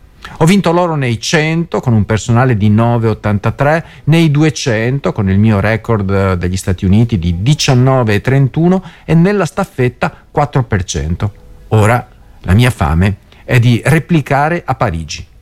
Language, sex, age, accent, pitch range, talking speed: Italian, male, 50-69, native, 95-145 Hz, 130 wpm